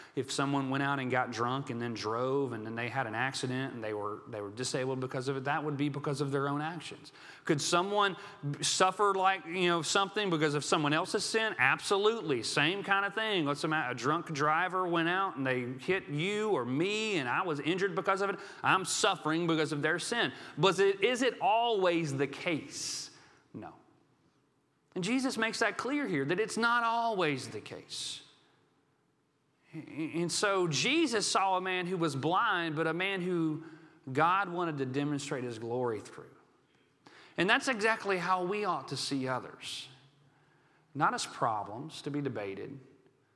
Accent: American